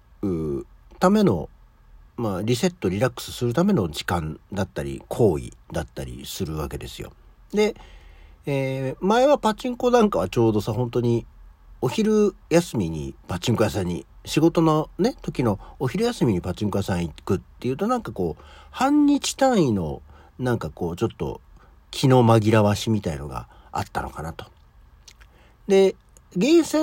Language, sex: Japanese, male